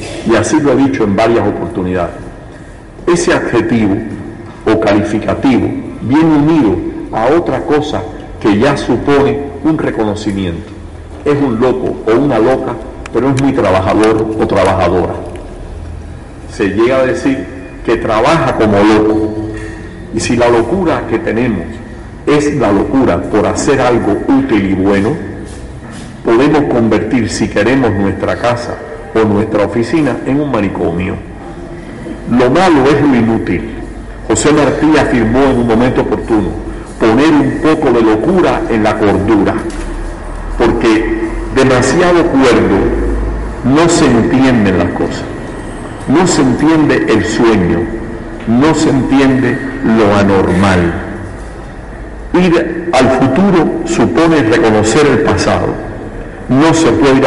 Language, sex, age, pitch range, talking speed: Spanish, male, 50-69, 100-135 Hz, 125 wpm